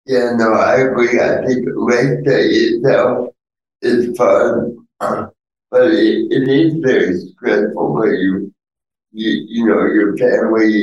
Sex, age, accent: male, 60-79, American